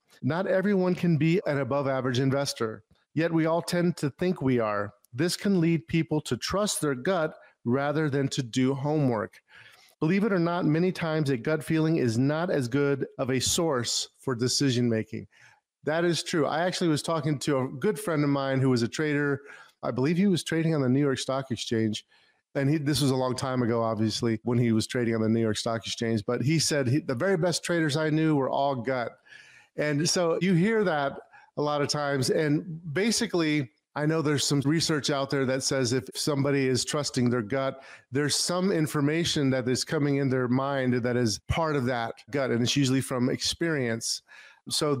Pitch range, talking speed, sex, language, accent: 125-160 Hz, 200 wpm, male, English, American